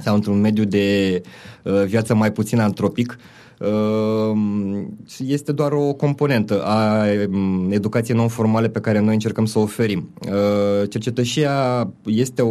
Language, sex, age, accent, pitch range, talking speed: Romanian, male, 20-39, native, 105-125 Hz, 135 wpm